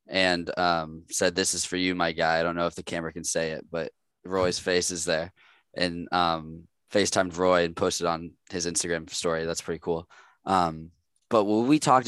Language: English